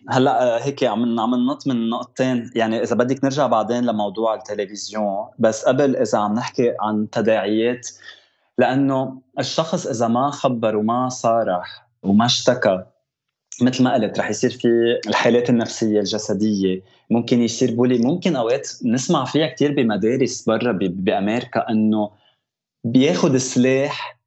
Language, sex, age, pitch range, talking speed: Arabic, male, 20-39, 115-140 Hz, 130 wpm